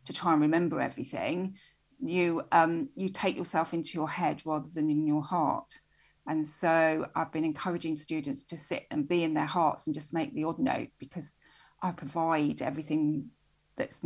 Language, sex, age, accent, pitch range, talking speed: English, female, 40-59, British, 155-180 Hz, 180 wpm